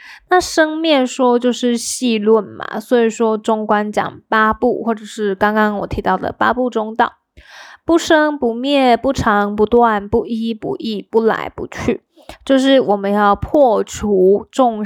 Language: Chinese